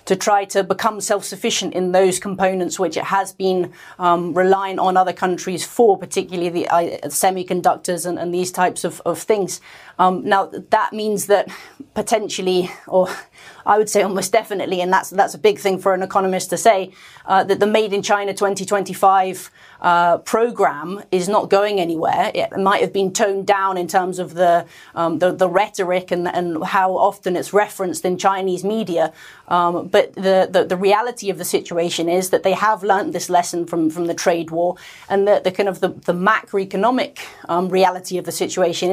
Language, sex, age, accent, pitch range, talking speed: English, female, 30-49, British, 180-205 Hz, 190 wpm